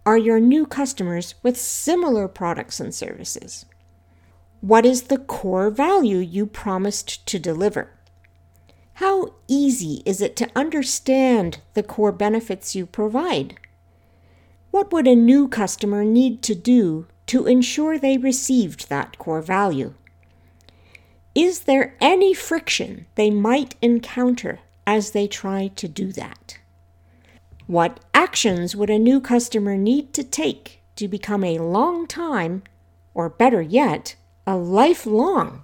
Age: 60-79